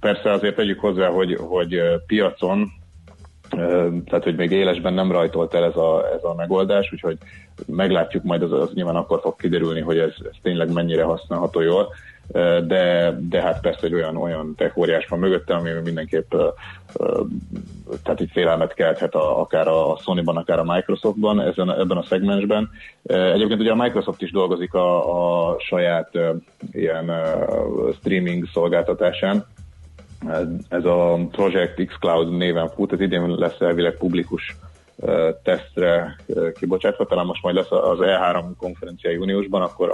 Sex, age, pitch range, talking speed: male, 30-49, 85-95 Hz, 145 wpm